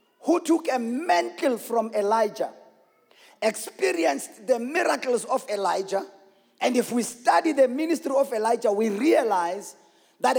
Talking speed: 125 wpm